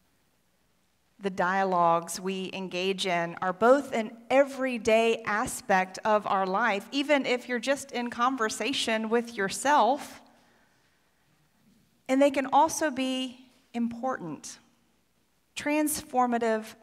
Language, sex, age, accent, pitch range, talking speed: English, female, 40-59, American, 185-245 Hz, 100 wpm